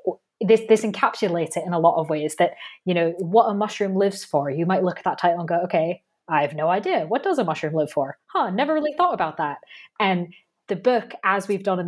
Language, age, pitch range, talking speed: English, 20-39, 175-225 Hz, 250 wpm